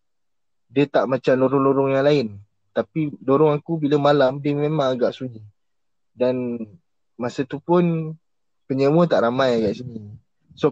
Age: 20-39